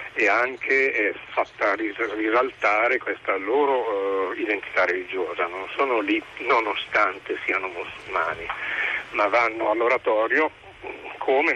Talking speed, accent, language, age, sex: 105 wpm, native, Italian, 40-59, male